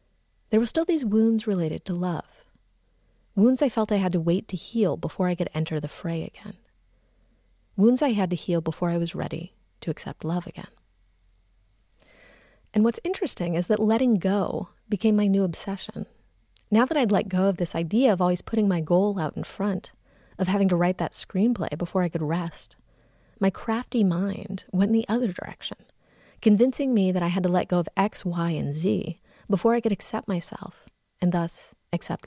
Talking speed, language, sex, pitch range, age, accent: 190 wpm, English, female, 170-215 Hz, 30-49, American